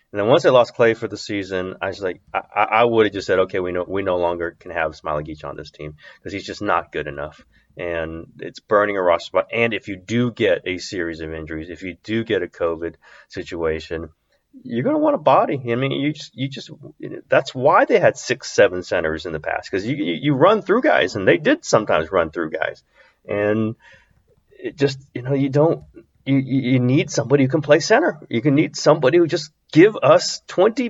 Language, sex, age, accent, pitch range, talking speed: English, male, 30-49, American, 90-150 Hz, 230 wpm